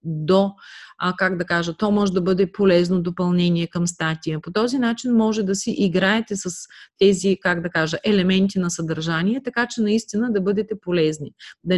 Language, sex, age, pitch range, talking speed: Bulgarian, female, 30-49, 175-220 Hz, 175 wpm